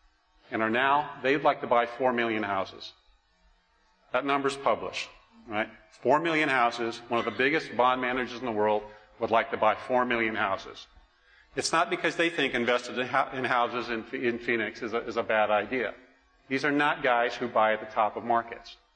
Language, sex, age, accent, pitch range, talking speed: English, male, 50-69, American, 115-145 Hz, 185 wpm